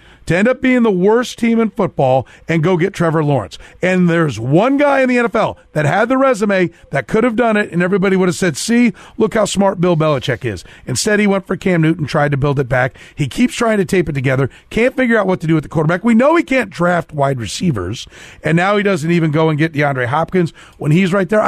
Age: 40-59